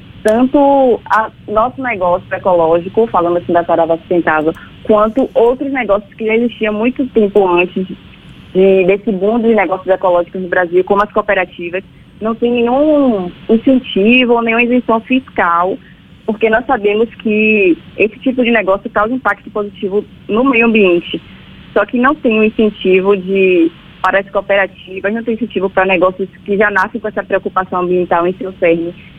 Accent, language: Brazilian, Portuguese